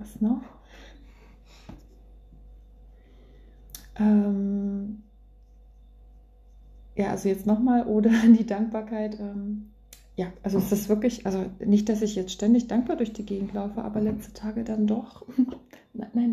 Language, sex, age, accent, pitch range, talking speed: German, female, 30-49, German, 190-215 Hz, 120 wpm